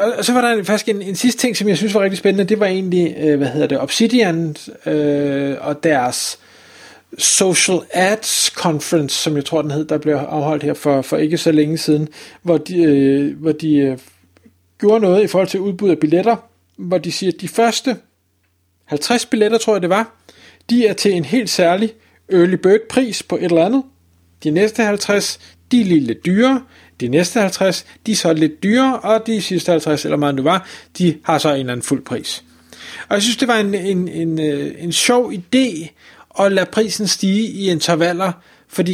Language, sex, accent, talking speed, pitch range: Danish, male, native, 205 wpm, 155-210 Hz